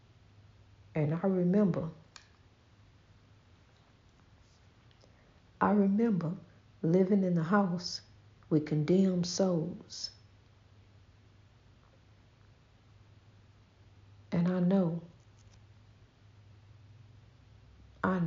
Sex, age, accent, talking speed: female, 60-79, American, 55 wpm